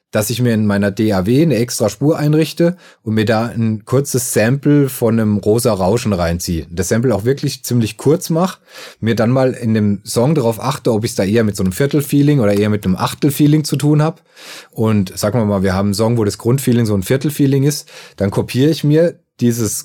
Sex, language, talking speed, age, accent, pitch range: male, German, 220 wpm, 30-49, German, 105-140 Hz